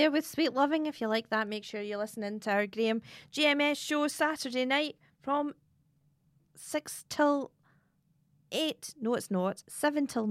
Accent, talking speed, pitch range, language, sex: British, 165 wpm, 185-280 Hz, English, female